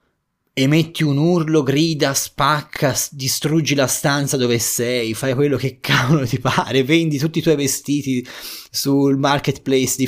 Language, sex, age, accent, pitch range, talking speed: Italian, male, 20-39, native, 105-140 Hz, 145 wpm